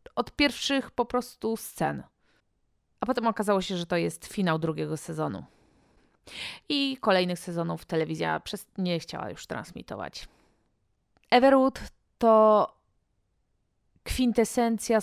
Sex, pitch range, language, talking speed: female, 170-230 Hz, Polish, 105 wpm